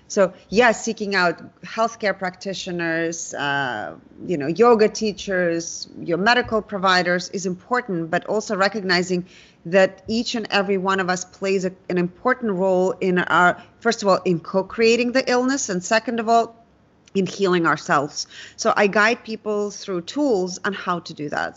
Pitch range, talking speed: 180-215 Hz, 165 wpm